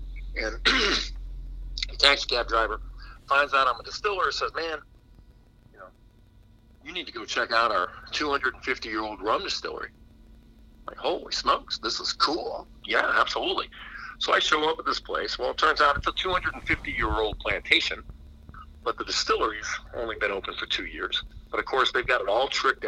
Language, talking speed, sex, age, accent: English, 170 wpm, male, 50-69, American